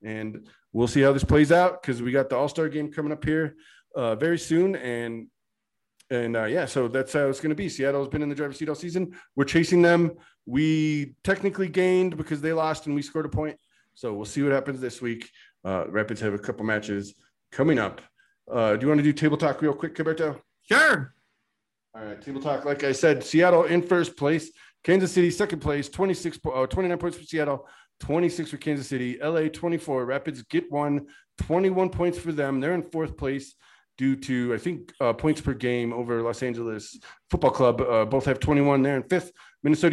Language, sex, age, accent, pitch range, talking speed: English, male, 30-49, American, 130-170 Hz, 210 wpm